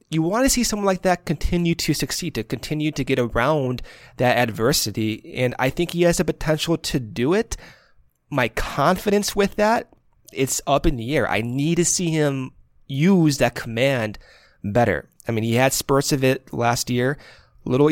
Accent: American